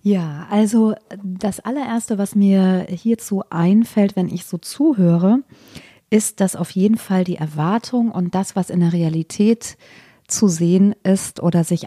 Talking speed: 150 wpm